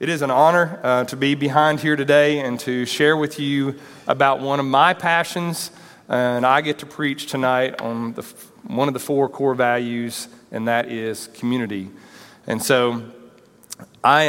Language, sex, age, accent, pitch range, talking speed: English, male, 40-59, American, 115-140 Hz, 170 wpm